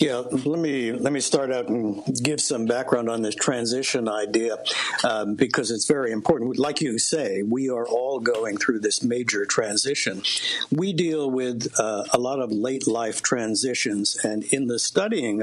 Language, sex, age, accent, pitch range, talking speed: English, male, 60-79, American, 115-140 Hz, 170 wpm